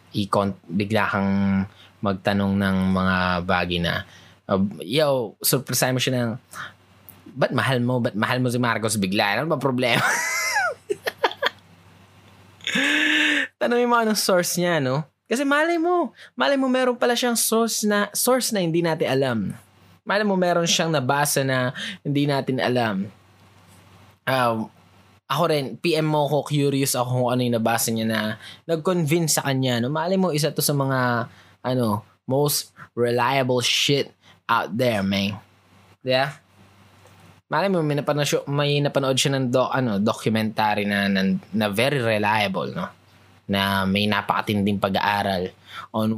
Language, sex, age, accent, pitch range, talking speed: Filipino, male, 20-39, native, 100-145 Hz, 145 wpm